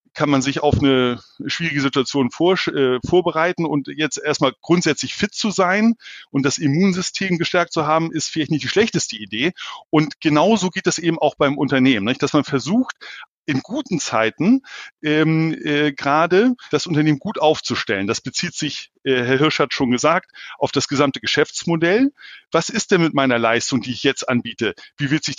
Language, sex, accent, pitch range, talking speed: German, male, German, 140-190 Hz, 175 wpm